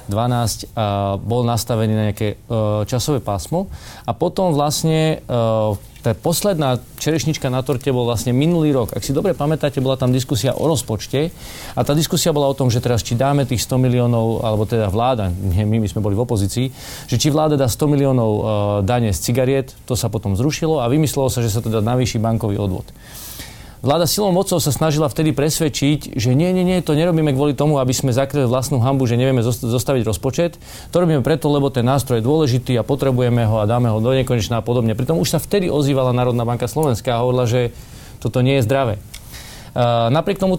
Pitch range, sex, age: 115-150 Hz, male, 30-49